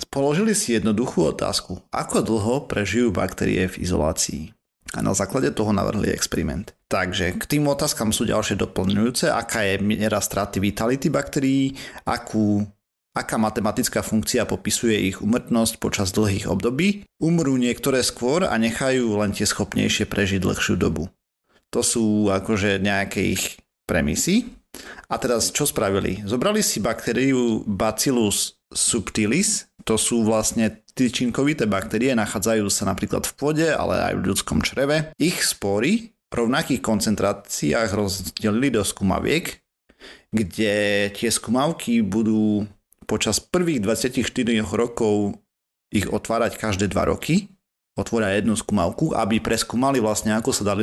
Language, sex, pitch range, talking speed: Slovak, male, 105-130 Hz, 125 wpm